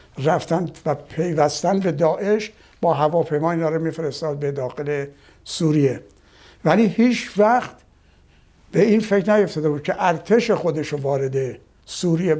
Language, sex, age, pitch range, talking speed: Persian, male, 60-79, 145-175 Hz, 115 wpm